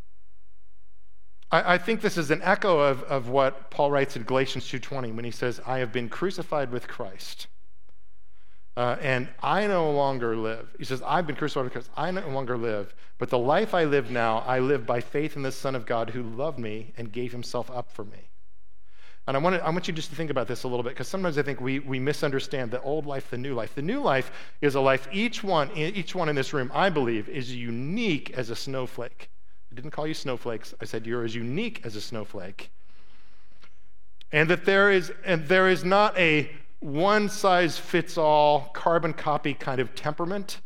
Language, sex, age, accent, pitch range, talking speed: English, male, 40-59, American, 120-160 Hz, 200 wpm